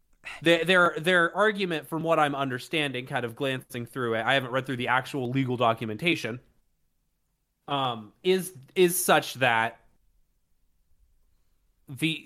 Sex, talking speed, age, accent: male, 130 wpm, 30-49, American